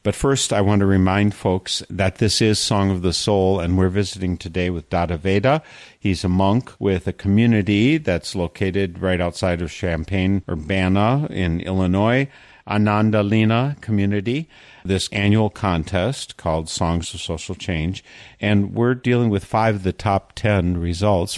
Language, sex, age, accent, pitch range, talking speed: English, male, 50-69, American, 85-105 Hz, 155 wpm